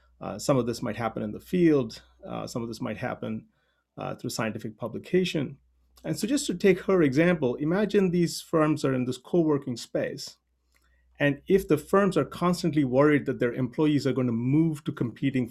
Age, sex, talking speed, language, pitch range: 40-59, male, 195 wpm, English, 115-155 Hz